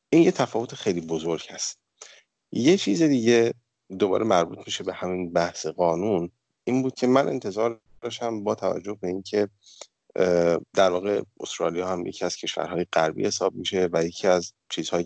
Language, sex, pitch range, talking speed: Persian, male, 85-115 Hz, 160 wpm